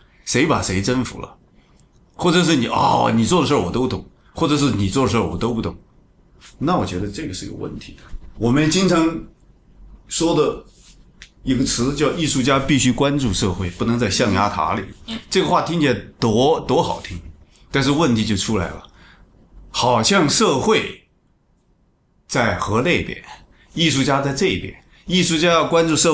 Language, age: Chinese, 30-49